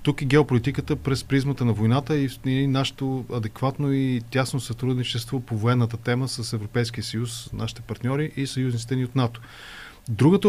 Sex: male